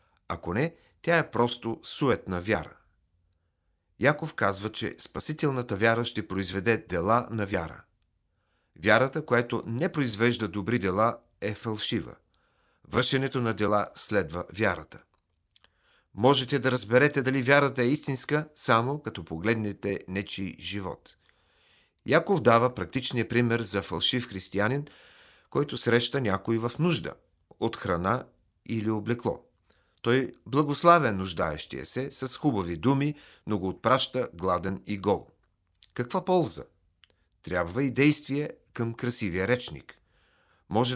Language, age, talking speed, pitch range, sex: Bulgarian, 40-59, 115 wpm, 100-130 Hz, male